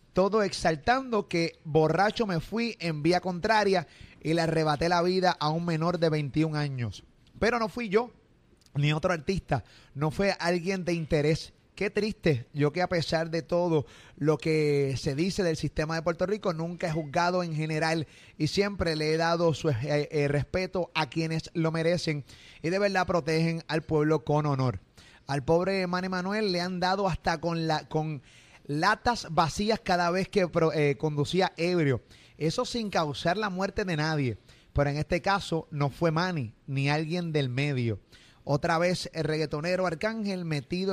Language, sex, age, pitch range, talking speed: Spanish, male, 30-49, 150-185 Hz, 175 wpm